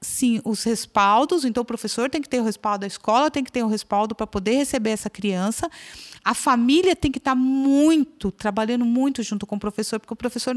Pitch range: 220-295 Hz